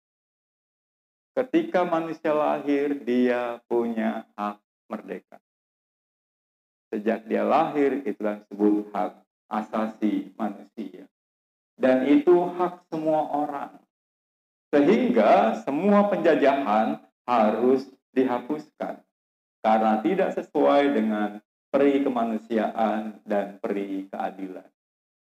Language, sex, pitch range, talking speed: Indonesian, male, 110-170 Hz, 80 wpm